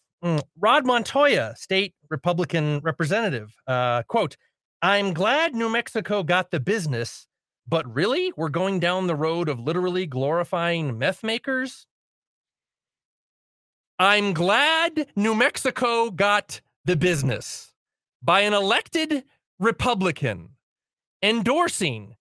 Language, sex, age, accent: English, male, 40-59, American